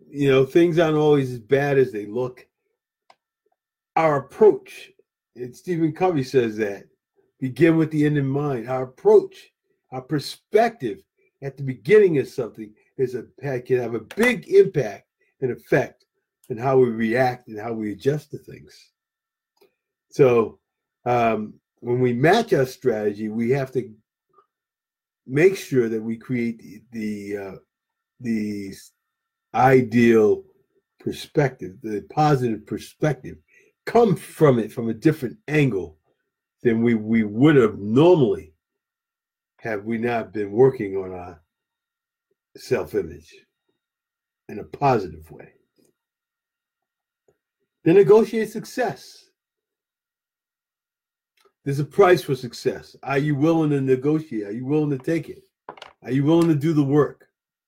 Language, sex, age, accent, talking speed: English, male, 50-69, American, 130 wpm